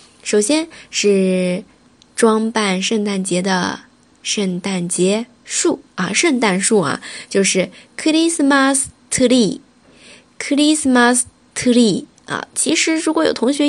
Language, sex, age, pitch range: Chinese, female, 10-29, 200-270 Hz